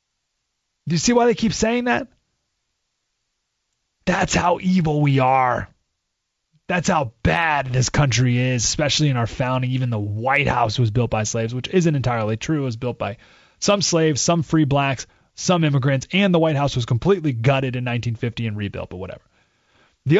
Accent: American